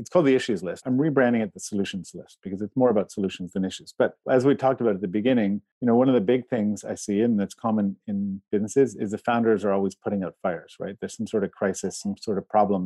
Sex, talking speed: male, 270 wpm